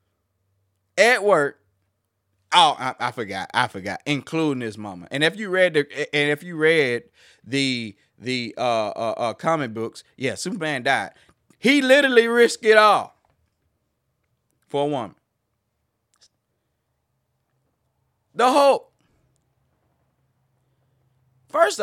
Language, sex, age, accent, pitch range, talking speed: English, male, 30-49, American, 110-160 Hz, 115 wpm